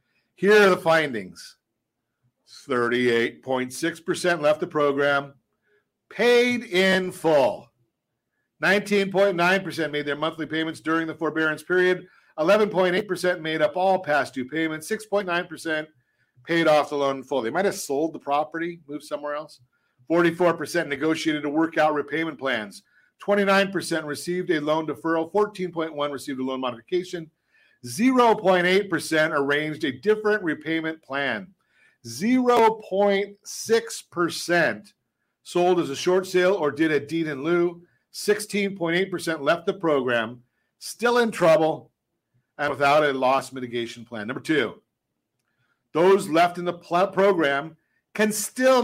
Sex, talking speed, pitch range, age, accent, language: male, 125 wpm, 145-190 Hz, 50-69, American, English